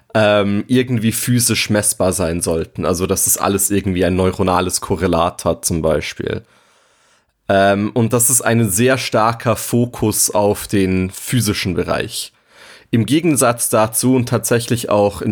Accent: German